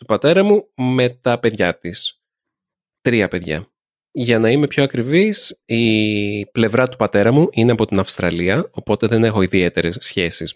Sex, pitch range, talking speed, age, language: male, 100-135 Hz, 160 wpm, 30-49, Greek